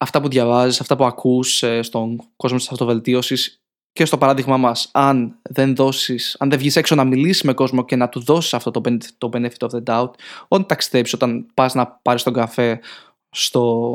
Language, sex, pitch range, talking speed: Greek, male, 125-160 Hz, 180 wpm